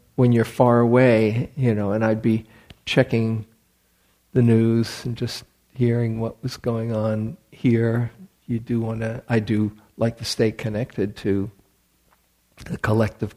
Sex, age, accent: male, 50-69, American